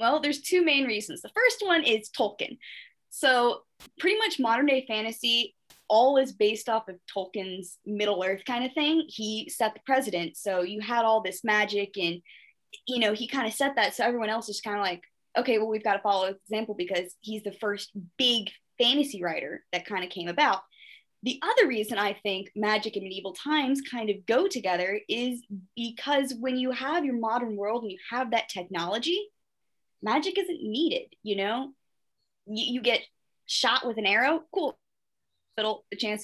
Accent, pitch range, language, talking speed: American, 205-275 Hz, English, 190 wpm